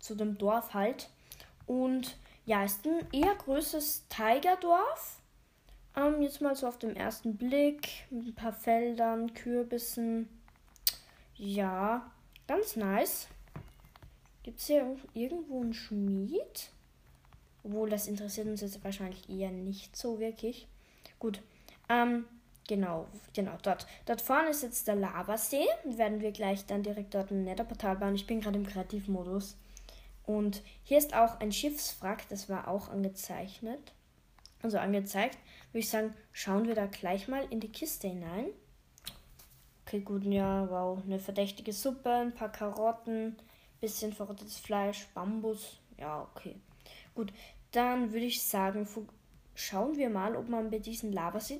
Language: German